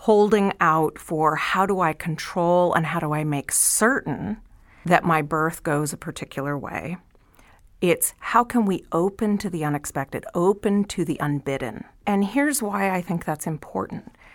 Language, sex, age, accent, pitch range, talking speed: English, female, 40-59, American, 155-200 Hz, 165 wpm